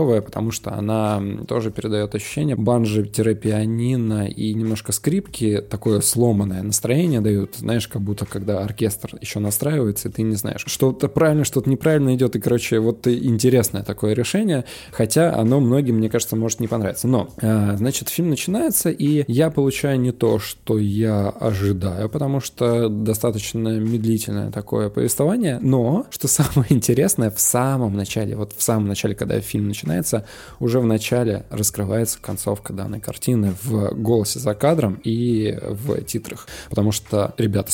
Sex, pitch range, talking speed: male, 105-130 Hz, 155 wpm